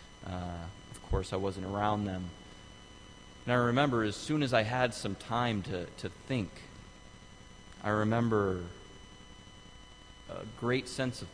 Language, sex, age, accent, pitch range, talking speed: English, male, 30-49, American, 95-125 Hz, 140 wpm